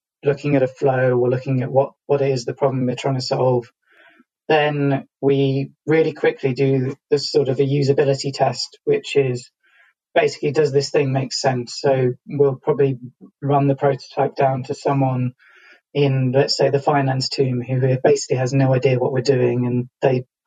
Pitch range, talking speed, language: 130-140 Hz, 180 wpm, English